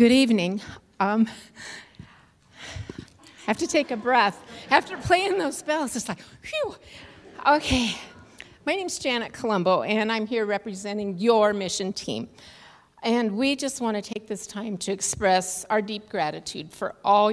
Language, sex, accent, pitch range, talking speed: English, female, American, 185-235 Hz, 150 wpm